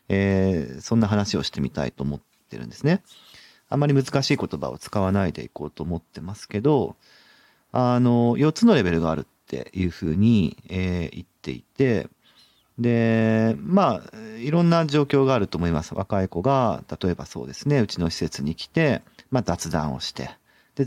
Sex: male